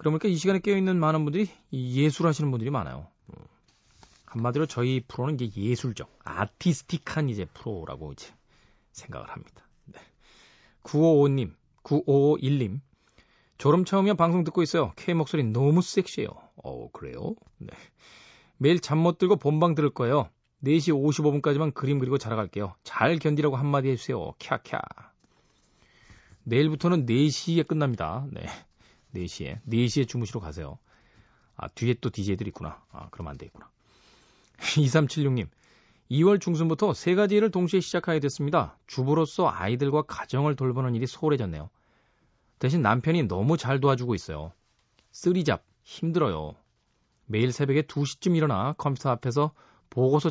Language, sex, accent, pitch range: Korean, male, native, 120-160 Hz